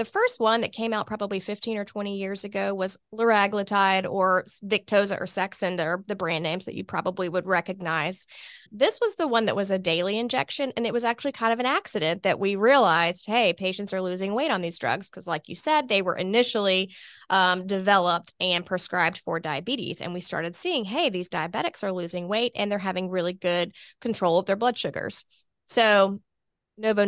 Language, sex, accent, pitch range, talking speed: English, female, American, 180-210 Hz, 200 wpm